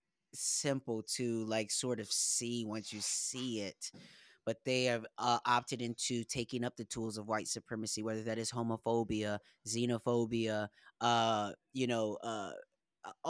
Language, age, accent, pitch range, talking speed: English, 20-39, American, 120-150 Hz, 145 wpm